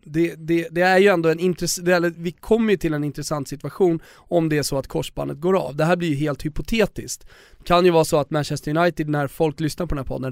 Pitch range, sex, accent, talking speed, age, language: 140-180 Hz, male, native, 255 wpm, 20-39, Swedish